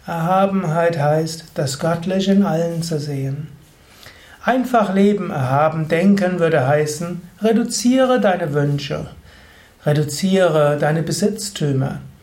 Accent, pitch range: German, 145-185 Hz